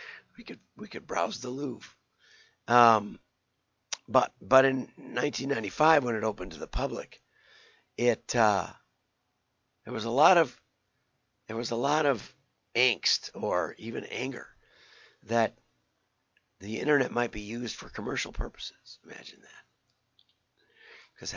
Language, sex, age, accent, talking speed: English, male, 50-69, American, 130 wpm